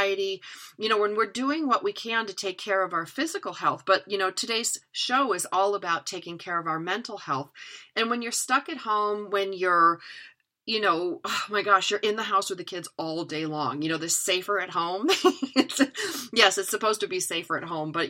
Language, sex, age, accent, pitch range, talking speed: English, female, 40-59, American, 170-210 Hz, 220 wpm